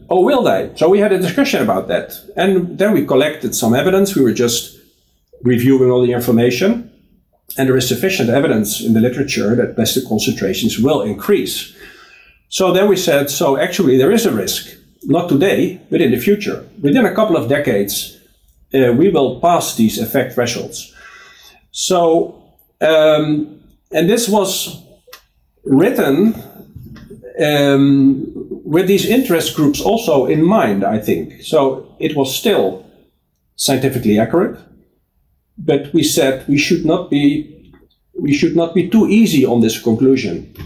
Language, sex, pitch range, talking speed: English, male, 120-170 Hz, 150 wpm